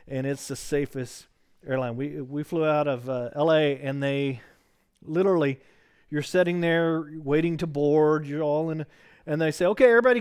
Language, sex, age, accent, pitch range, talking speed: English, male, 40-59, American, 140-180 Hz, 170 wpm